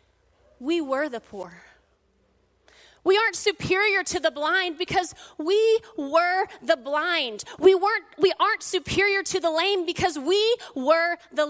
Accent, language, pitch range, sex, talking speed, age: American, English, 285-375 Hz, female, 140 wpm, 30-49